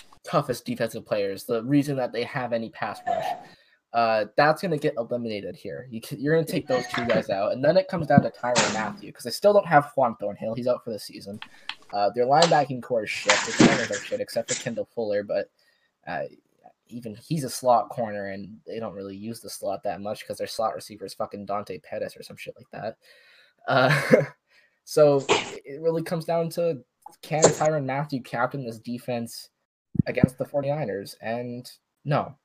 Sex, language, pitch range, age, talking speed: male, English, 115-155 Hz, 10-29, 200 wpm